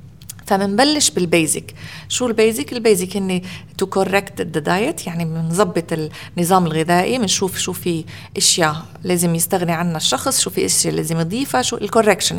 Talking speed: 135 wpm